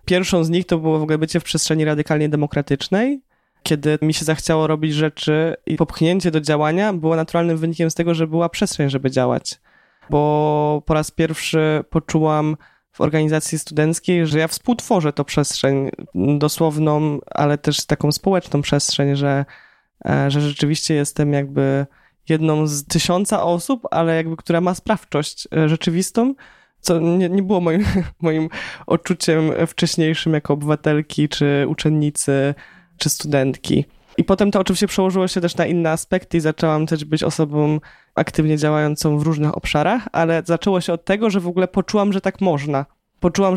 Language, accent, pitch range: Polish, native, 150-180 Hz